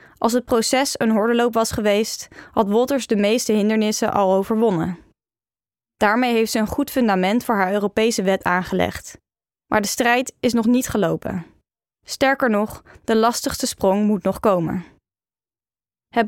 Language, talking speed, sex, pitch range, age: Dutch, 150 wpm, female, 200-240 Hz, 20-39